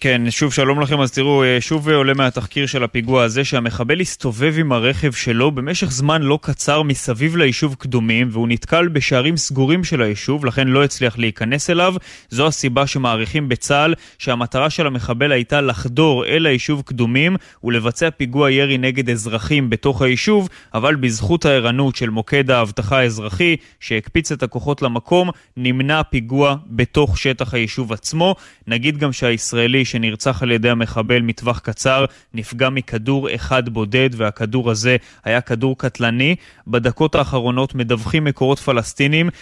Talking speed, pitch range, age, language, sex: 145 wpm, 120-145 Hz, 20-39, Hebrew, male